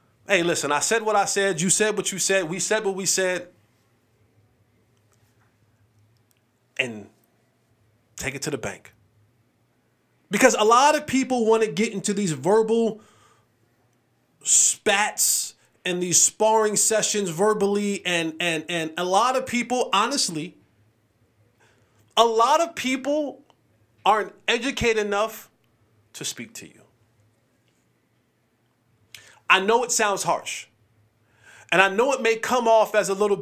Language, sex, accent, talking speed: English, male, American, 130 wpm